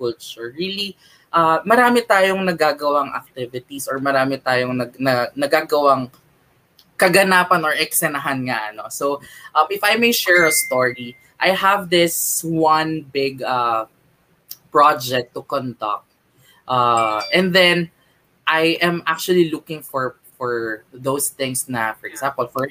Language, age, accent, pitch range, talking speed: English, 20-39, Filipino, 135-175 Hz, 130 wpm